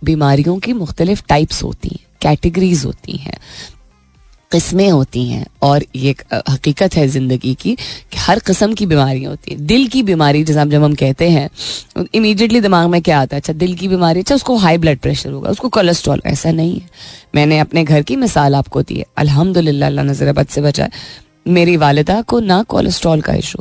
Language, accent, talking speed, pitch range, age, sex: Hindi, native, 190 wpm, 145-200 Hz, 20-39, female